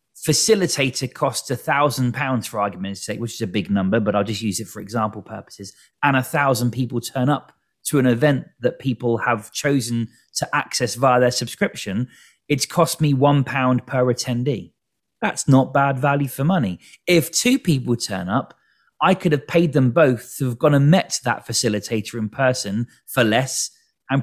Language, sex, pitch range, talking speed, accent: English, male, 115-145 Hz, 180 wpm, British